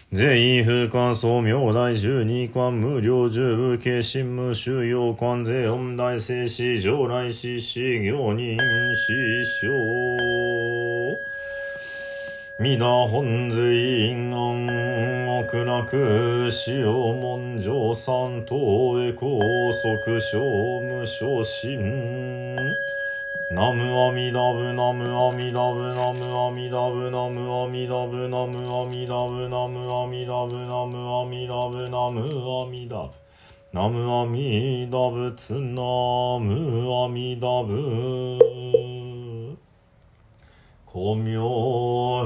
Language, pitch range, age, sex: Japanese, 120-125 Hz, 40-59, male